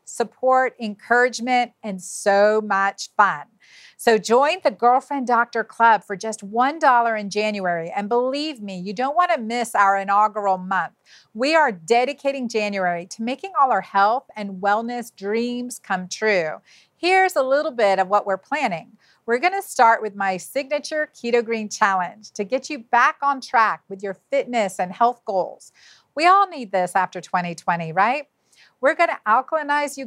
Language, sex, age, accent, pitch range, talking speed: English, female, 40-59, American, 205-270 Hz, 160 wpm